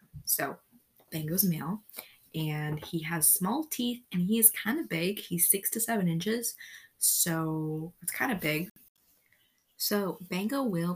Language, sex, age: English, female, 20-39